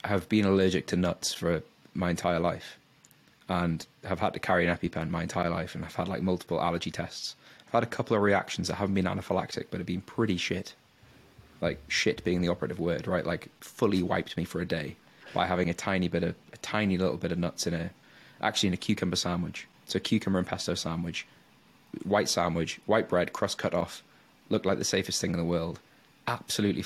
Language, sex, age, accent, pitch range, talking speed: English, male, 20-39, British, 85-100 Hz, 215 wpm